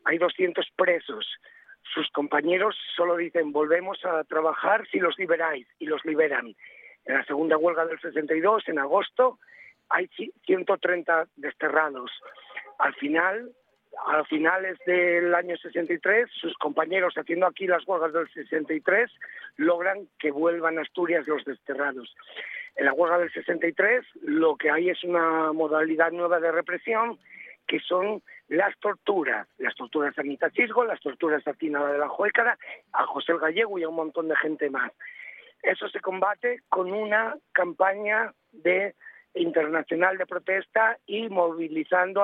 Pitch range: 160-200 Hz